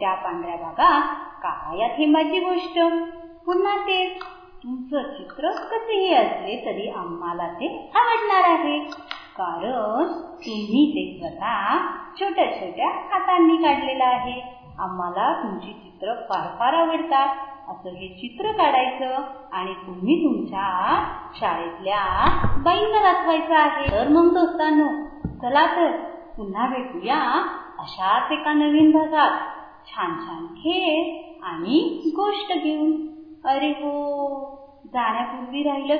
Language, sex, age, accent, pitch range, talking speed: Marathi, female, 20-39, native, 250-340 Hz, 85 wpm